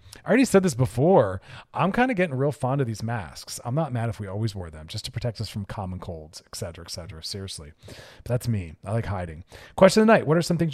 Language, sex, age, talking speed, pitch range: English, male, 40-59, 270 wpm, 105-140 Hz